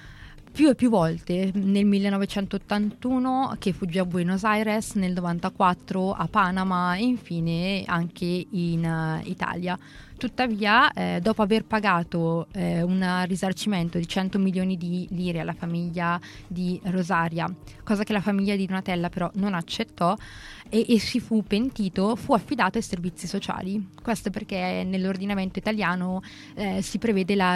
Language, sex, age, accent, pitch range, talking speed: Italian, female, 20-39, native, 175-200 Hz, 140 wpm